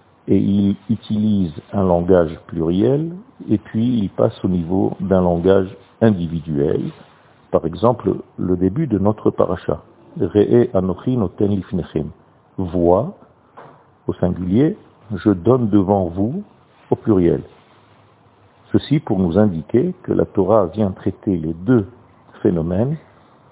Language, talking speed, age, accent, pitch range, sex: French, 130 wpm, 50-69, French, 90-115 Hz, male